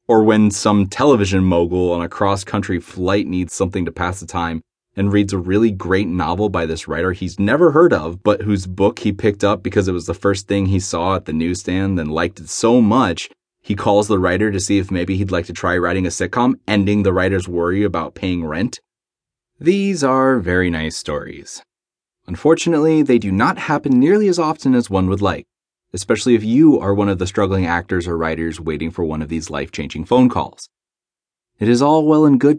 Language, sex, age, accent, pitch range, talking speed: English, male, 30-49, American, 90-115 Hz, 210 wpm